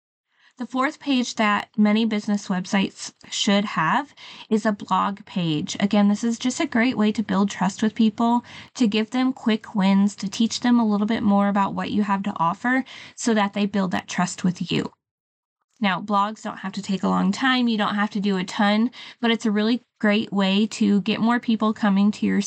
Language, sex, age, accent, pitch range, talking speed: English, female, 20-39, American, 195-230 Hz, 215 wpm